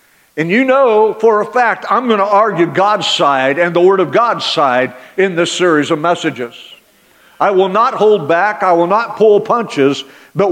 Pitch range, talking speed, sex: 165-220 Hz, 195 wpm, male